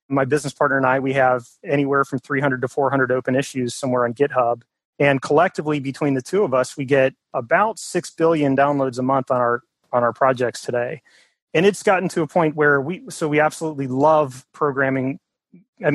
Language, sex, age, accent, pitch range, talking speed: English, male, 30-49, American, 130-150 Hz, 195 wpm